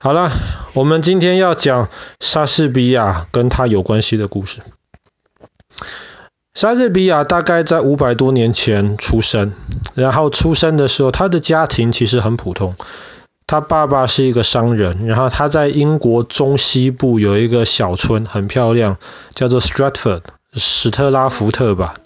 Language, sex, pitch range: Chinese, male, 105-145 Hz